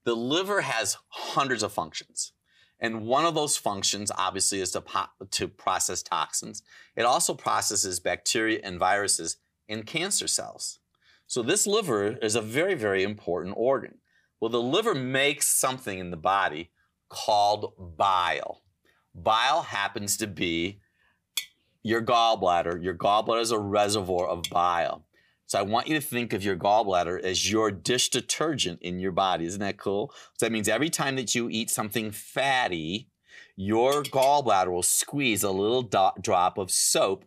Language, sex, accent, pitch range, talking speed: English, male, American, 95-120 Hz, 155 wpm